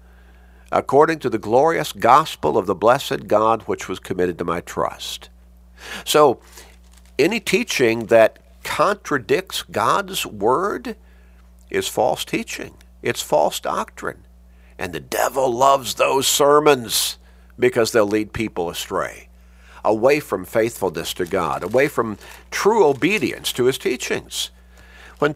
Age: 50-69